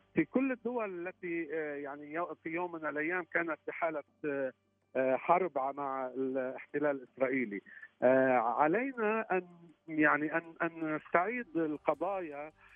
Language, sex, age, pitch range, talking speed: Arabic, male, 50-69, 145-195 Hz, 100 wpm